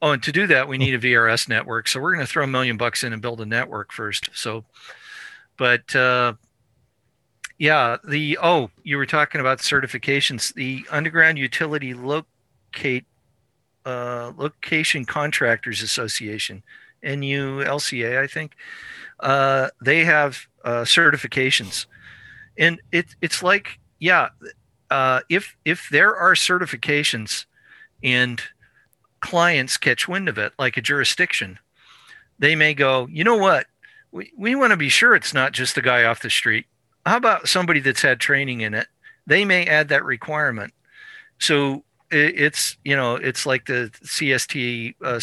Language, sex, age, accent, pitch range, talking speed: English, male, 50-69, American, 120-155 Hz, 150 wpm